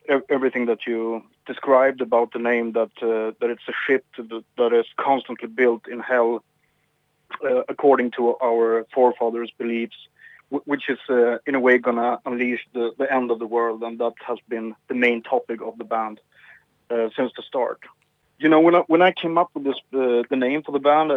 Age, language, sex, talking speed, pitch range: 30-49, Hebrew, male, 205 wpm, 115-135 Hz